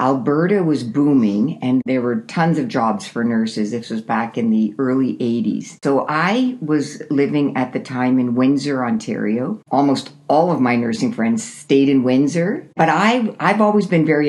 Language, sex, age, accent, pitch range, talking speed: English, female, 60-79, American, 130-165 Hz, 180 wpm